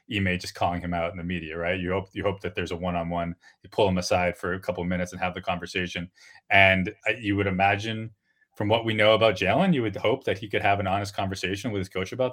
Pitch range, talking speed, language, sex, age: 95-120 Hz, 270 wpm, English, male, 20-39